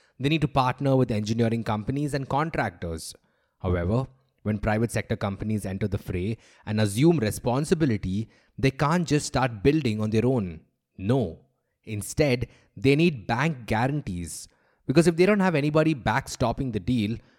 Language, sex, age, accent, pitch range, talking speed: English, male, 20-39, Indian, 105-140 Hz, 150 wpm